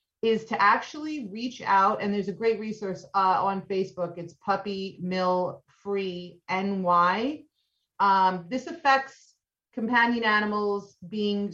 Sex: female